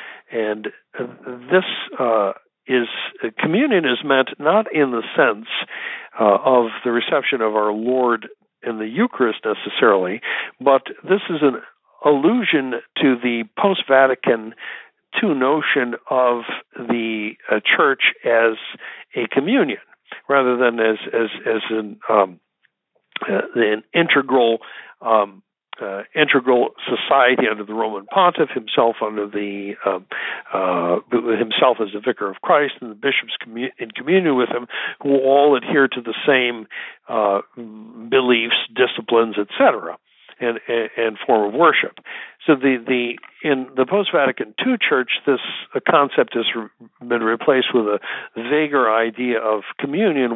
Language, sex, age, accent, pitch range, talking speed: English, male, 60-79, American, 110-130 Hz, 130 wpm